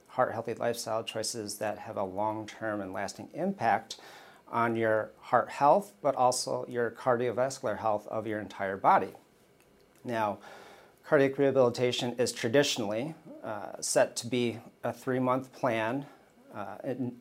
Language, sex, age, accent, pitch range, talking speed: English, male, 40-59, American, 110-120 Hz, 130 wpm